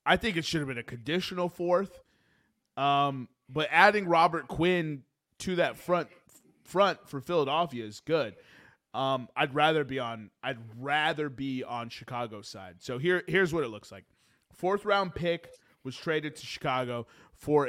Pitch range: 130-180 Hz